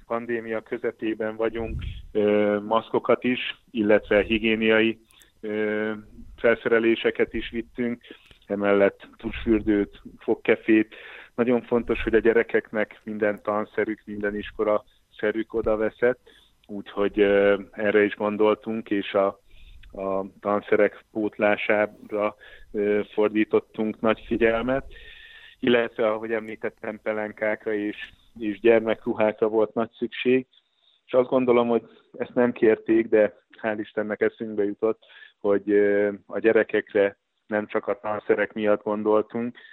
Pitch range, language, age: 105-110 Hz, Hungarian, 30-49